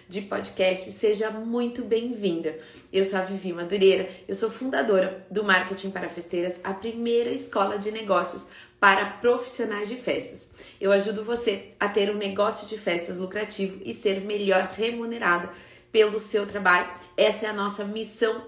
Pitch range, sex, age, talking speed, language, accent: 185-230 Hz, female, 30-49, 155 wpm, Portuguese, Brazilian